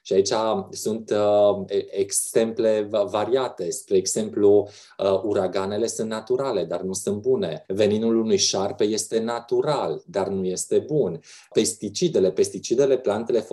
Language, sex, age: Romanian, male, 20-39